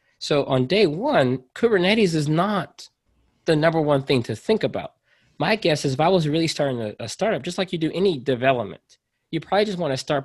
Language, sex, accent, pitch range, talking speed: Indonesian, male, American, 120-150 Hz, 210 wpm